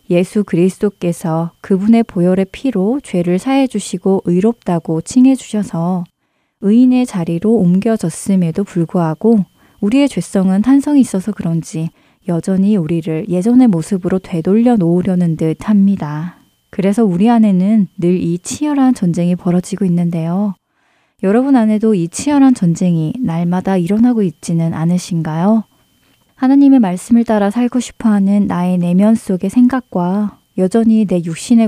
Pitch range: 175-220 Hz